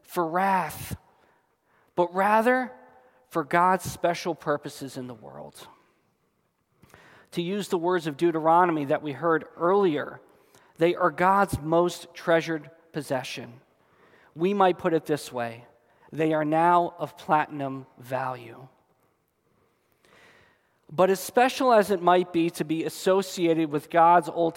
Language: English